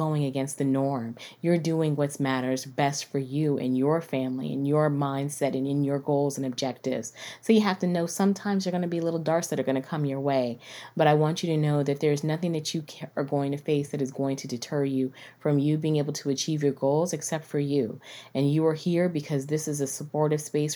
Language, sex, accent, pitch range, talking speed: English, female, American, 140-180 Hz, 240 wpm